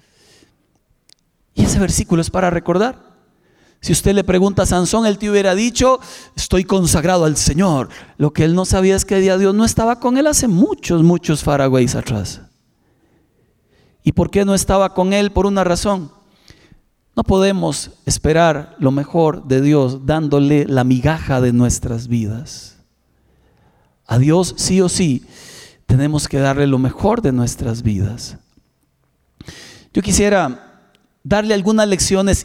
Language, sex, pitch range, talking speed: Spanish, male, 135-195 Hz, 145 wpm